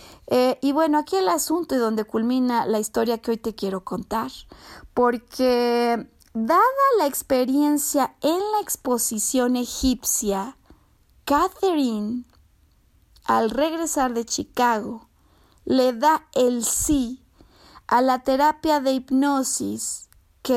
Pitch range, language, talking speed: 230-275 Hz, Spanish, 115 wpm